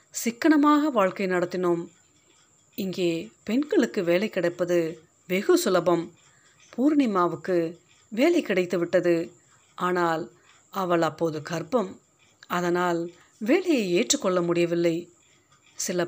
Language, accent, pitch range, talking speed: Tamil, native, 170-215 Hz, 80 wpm